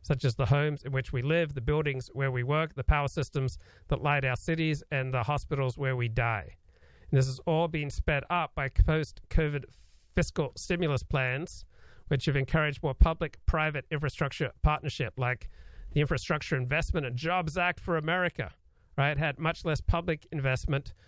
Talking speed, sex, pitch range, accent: 175 wpm, male, 125-155 Hz, American